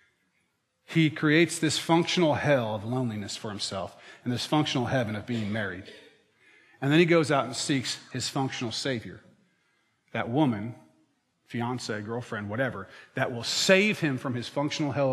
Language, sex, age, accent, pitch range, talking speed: English, male, 30-49, American, 120-155 Hz, 155 wpm